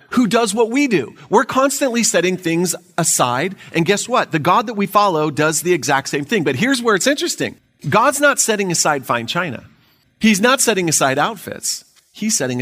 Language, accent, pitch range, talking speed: English, American, 140-200 Hz, 195 wpm